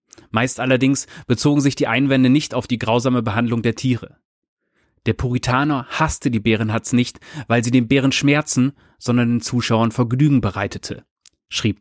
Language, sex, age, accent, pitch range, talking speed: German, male, 30-49, German, 115-140 Hz, 155 wpm